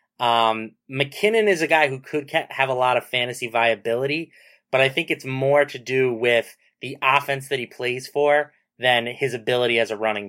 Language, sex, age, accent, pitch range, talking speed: English, male, 20-39, American, 120-140 Hz, 190 wpm